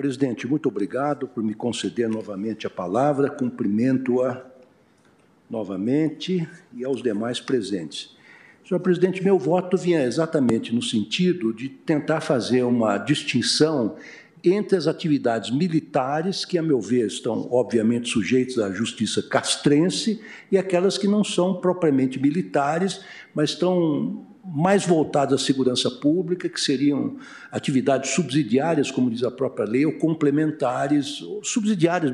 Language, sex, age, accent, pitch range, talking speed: Portuguese, male, 60-79, Brazilian, 130-180 Hz, 130 wpm